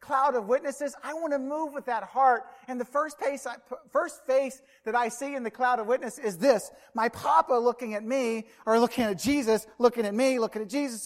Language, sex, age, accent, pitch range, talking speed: English, male, 40-59, American, 235-290 Hz, 215 wpm